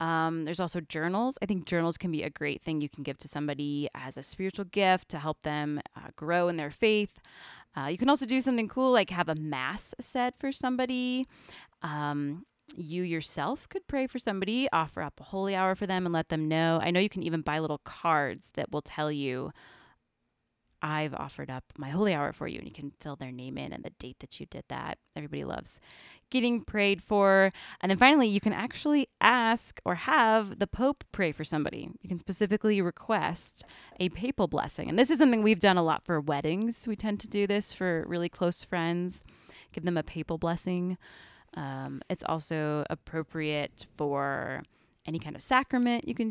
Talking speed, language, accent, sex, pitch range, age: 200 wpm, English, American, female, 150-215 Hz, 20-39